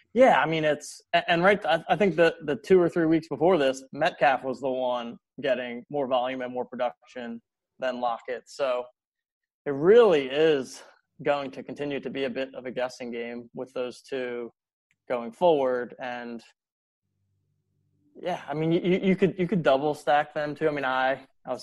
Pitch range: 125-150 Hz